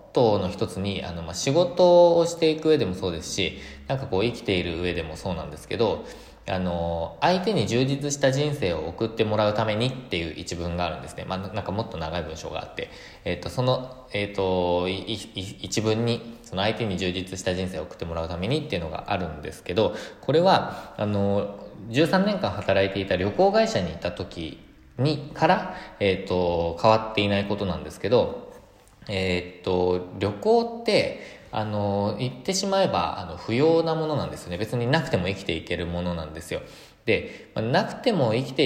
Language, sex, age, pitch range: Japanese, male, 20-39, 90-130 Hz